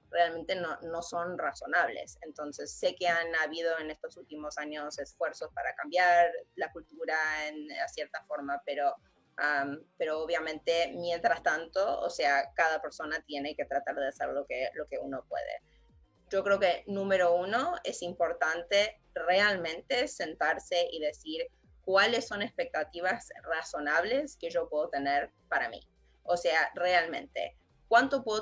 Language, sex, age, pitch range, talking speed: English, female, 20-39, 165-210 Hz, 150 wpm